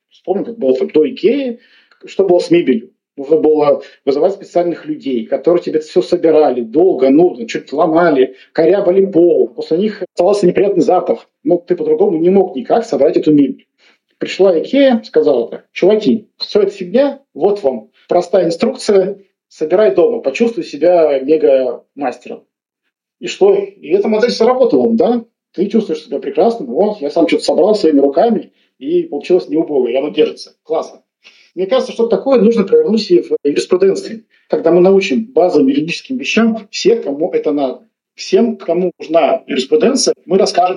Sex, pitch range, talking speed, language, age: male, 160-250 Hz, 155 wpm, Russian, 40-59